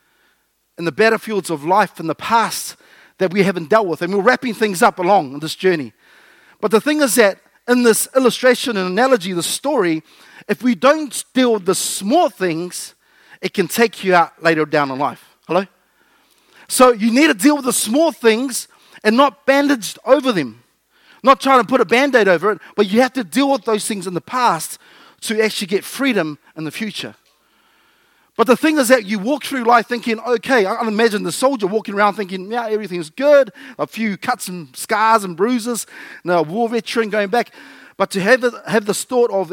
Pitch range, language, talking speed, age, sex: 185-250 Hz, English, 205 wpm, 40-59, male